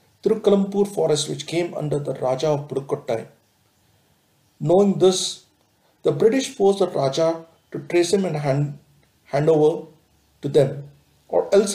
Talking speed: 145 wpm